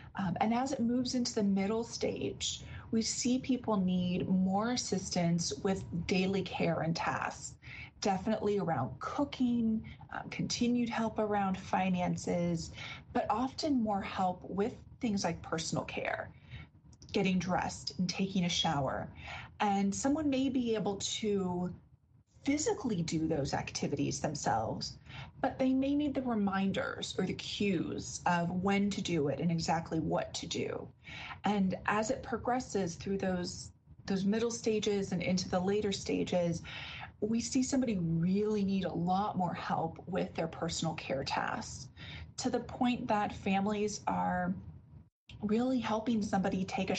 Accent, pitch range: American, 180-225 Hz